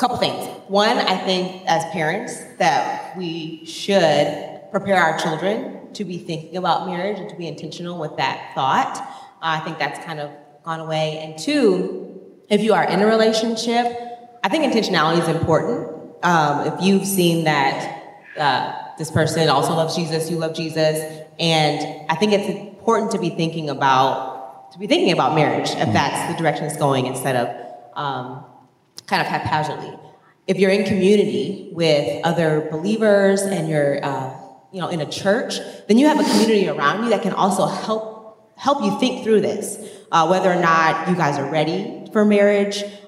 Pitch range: 160-200 Hz